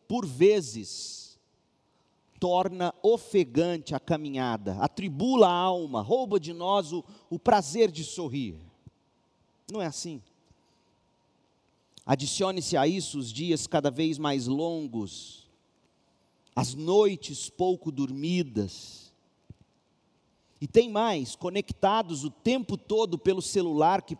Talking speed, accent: 105 wpm, Brazilian